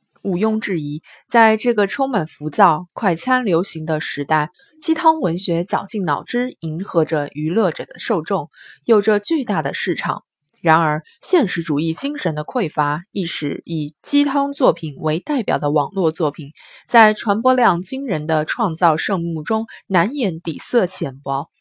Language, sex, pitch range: Chinese, female, 155-235 Hz